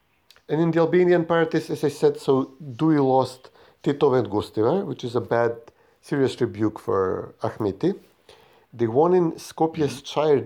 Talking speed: 155 wpm